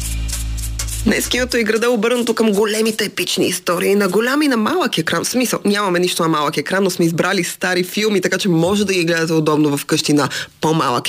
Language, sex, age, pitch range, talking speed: Bulgarian, female, 20-39, 170-205 Hz, 195 wpm